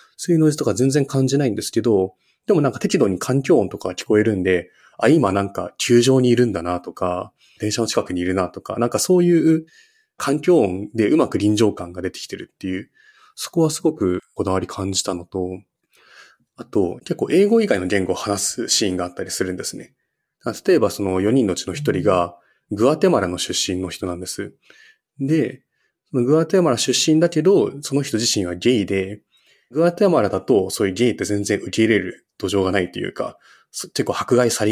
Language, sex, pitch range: Japanese, male, 95-155 Hz